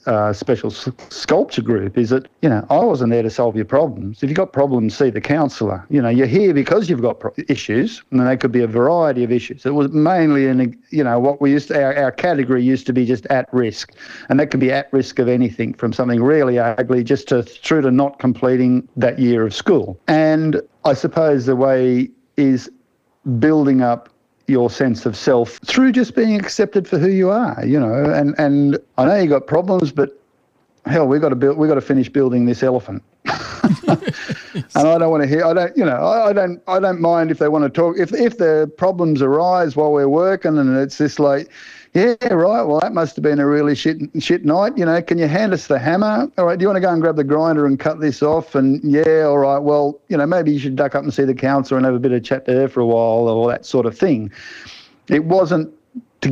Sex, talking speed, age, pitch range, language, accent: male, 235 wpm, 50-69, 130-155 Hz, English, Australian